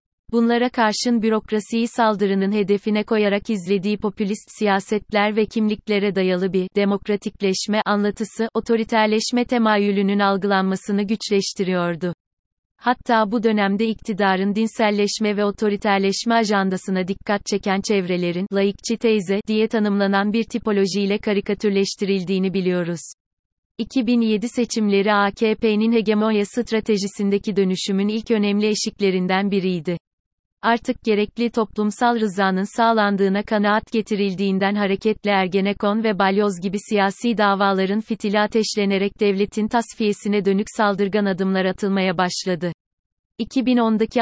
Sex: female